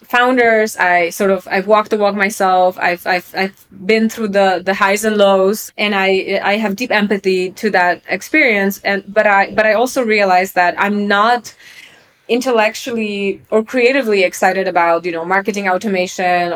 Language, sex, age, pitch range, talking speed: English, female, 20-39, 185-220 Hz, 170 wpm